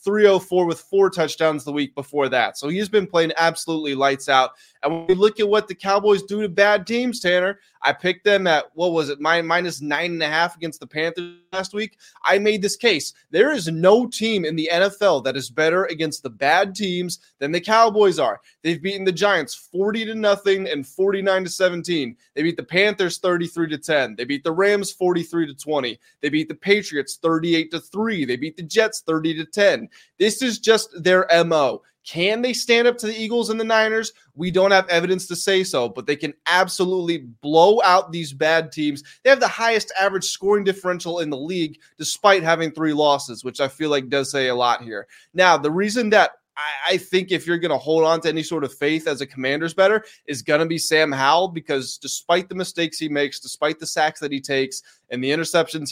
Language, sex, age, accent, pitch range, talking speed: English, male, 20-39, American, 150-195 Hz, 220 wpm